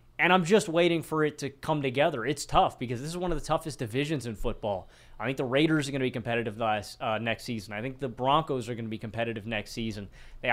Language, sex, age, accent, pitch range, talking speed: English, male, 30-49, American, 120-150 Hz, 255 wpm